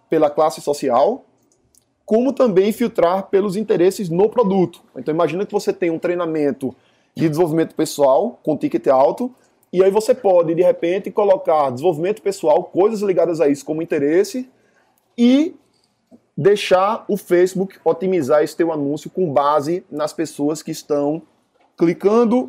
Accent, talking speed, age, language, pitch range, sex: Brazilian, 140 wpm, 20-39, Portuguese, 165-205 Hz, male